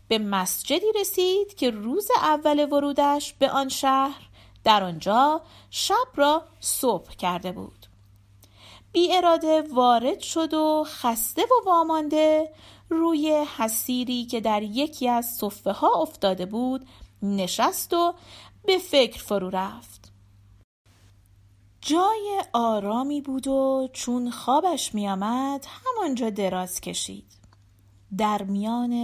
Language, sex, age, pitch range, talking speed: Persian, female, 40-59, 185-310 Hz, 110 wpm